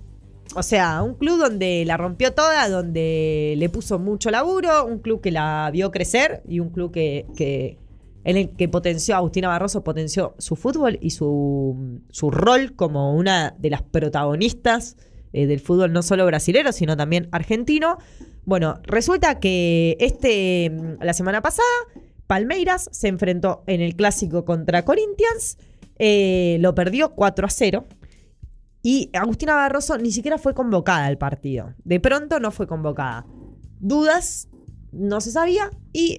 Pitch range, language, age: 170-260 Hz, Spanish, 20-39